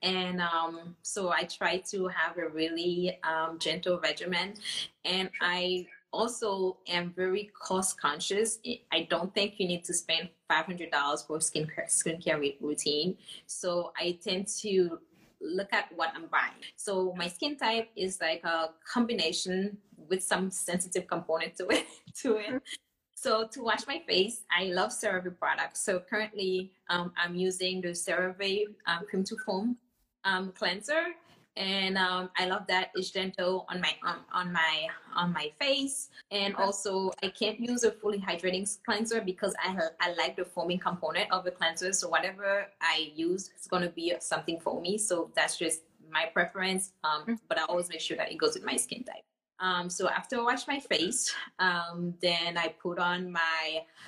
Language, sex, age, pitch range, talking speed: English, female, 20-39, 170-200 Hz, 170 wpm